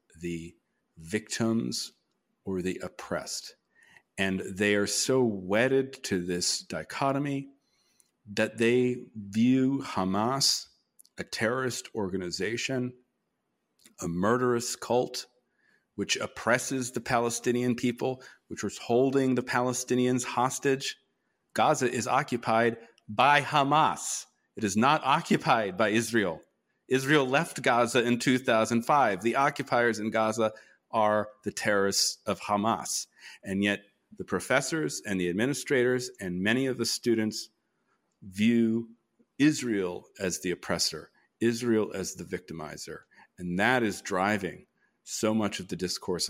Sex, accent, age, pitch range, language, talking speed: male, American, 40-59, 100-125 Hz, English, 115 wpm